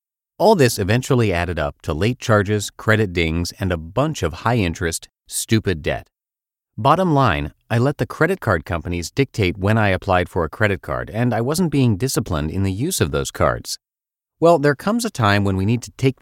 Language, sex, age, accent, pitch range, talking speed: English, male, 30-49, American, 90-130 Hz, 200 wpm